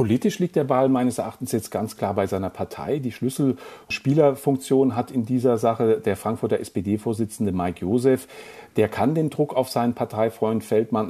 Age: 40-59